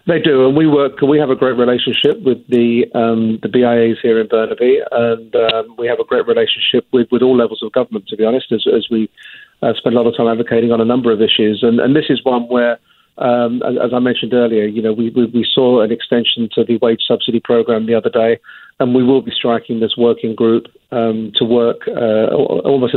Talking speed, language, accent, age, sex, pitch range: 235 wpm, English, British, 40-59, male, 115-125 Hz